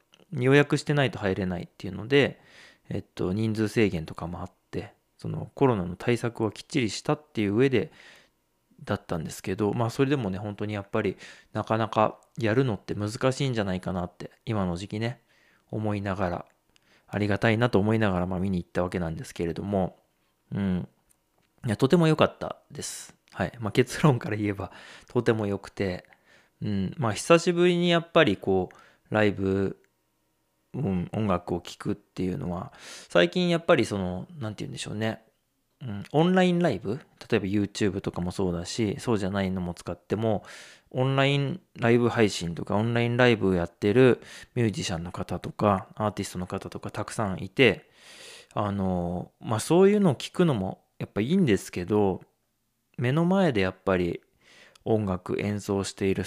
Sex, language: male, Japanese